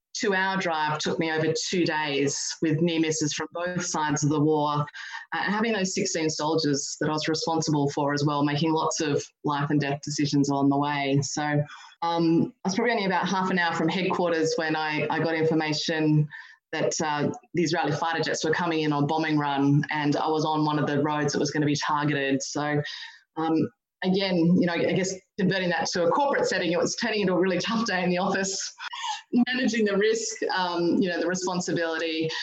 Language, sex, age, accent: English, female, 20-39, Australian